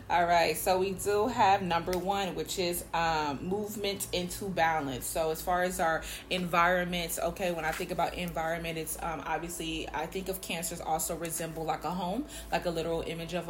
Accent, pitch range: American, 160-180 Hz